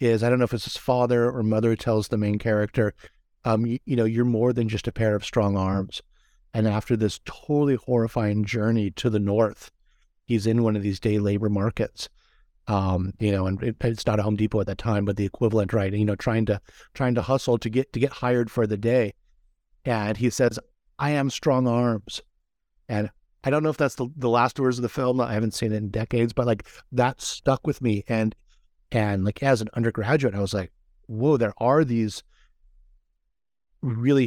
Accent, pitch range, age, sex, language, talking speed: American, 105-120 Hz, 50-69, male, English, 215 wpm